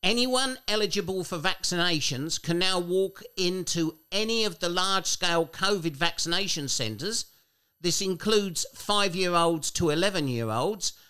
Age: 50-69